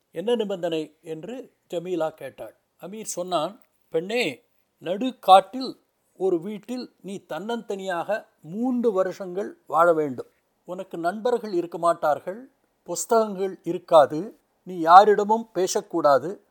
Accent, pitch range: native, 170-230 Hz